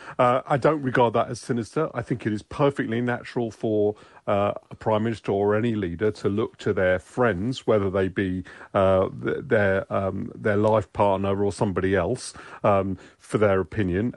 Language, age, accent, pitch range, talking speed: English, 40-59, British, 100-125 Hz, 185 wpm